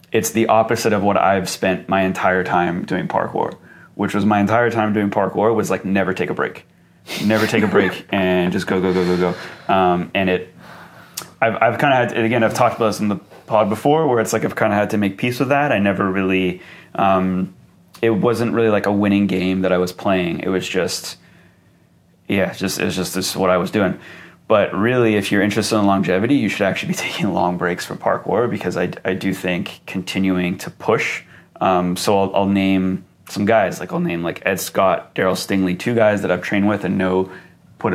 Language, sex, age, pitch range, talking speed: English, male, 30-49, 95-105 Hz, 230 wpm